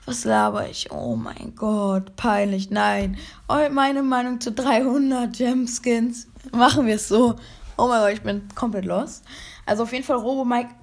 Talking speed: 160 wpm